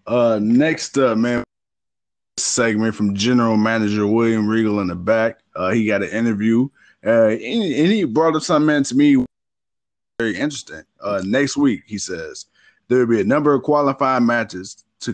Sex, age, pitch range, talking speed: male, 20-39, 105-130 Hz, 165 wpm